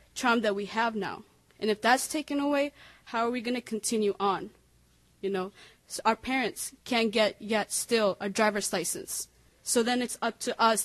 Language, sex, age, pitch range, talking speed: English, female, 20-39, 200-230 Hz, 195 wpm